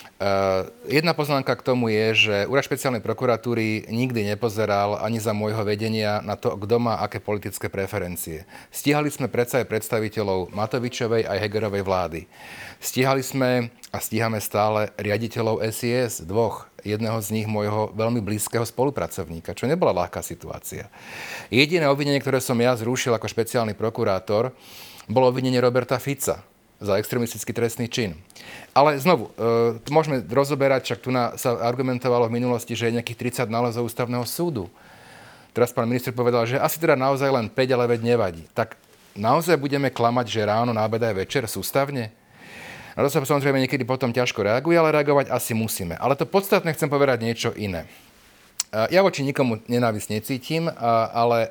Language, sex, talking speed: Slovak, male, 155 wpm